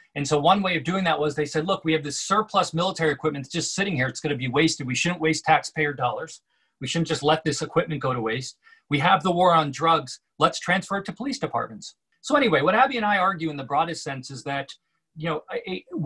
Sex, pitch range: male, 145-190 Hz